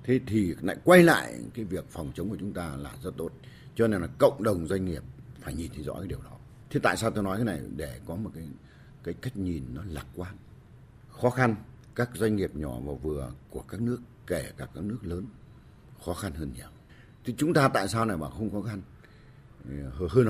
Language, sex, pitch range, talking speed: Vietnamese, male, 80-120 Hz, 230 wpm